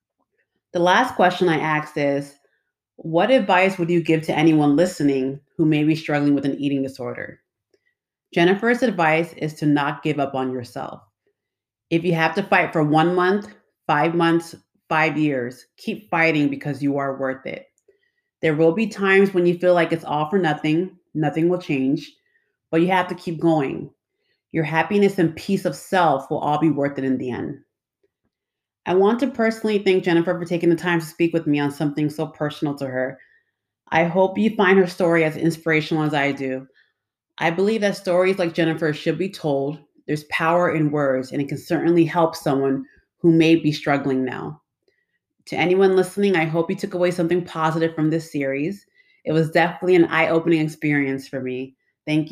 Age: 30-49